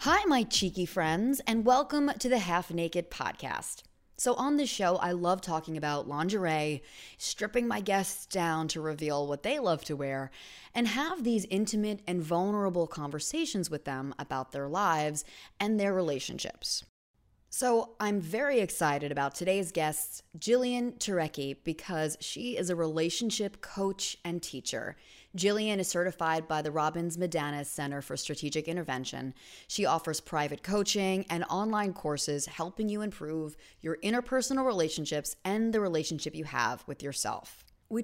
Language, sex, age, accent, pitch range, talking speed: English, female, 20-39, American, 150-205 Hz, 150 wpm